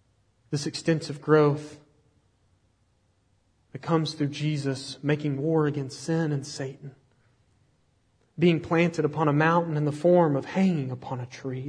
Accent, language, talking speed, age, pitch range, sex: American, English, 135 wpm, 30-49, 120-180 Hz, male